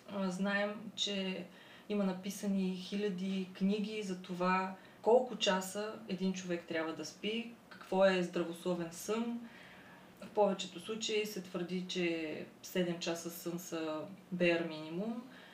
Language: Bulgarian